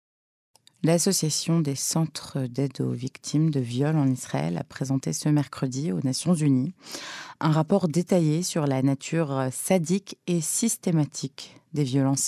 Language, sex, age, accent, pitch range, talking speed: French, female, 30-49, French, 135-160 Hz, 135 wpm